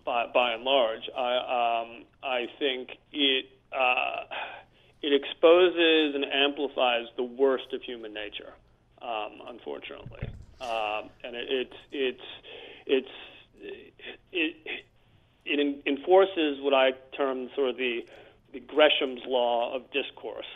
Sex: male